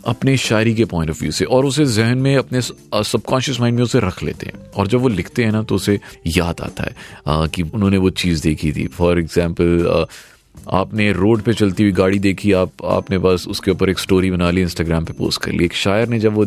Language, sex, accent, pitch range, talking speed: Hindi, male, native, 95-125 Hz, 235 wpm